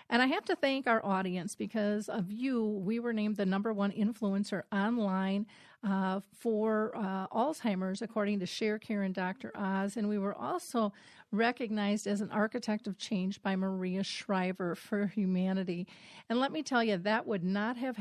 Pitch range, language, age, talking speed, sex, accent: 195-225 Hz, English, 40-59, 175 wpm, female, American